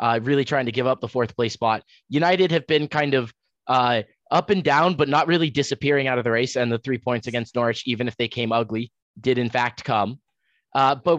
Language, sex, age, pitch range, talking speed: English, male, 20-39, 125-155 Hz, 235 wpm